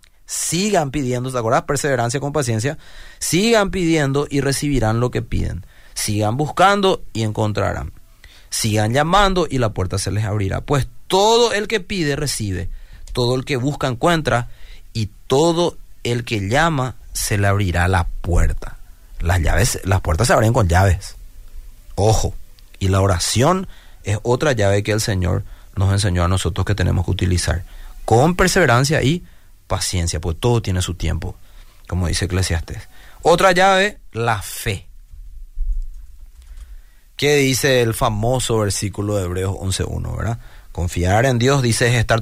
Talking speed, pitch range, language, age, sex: 145 wpm, 95-135 Hz, Spanish, 30-49, male